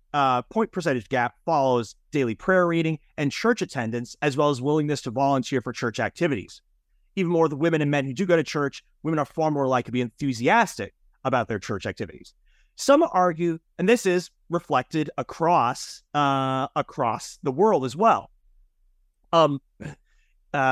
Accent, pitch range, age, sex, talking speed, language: American, 125-165 Hz, 30-49, male, 170 wpm, English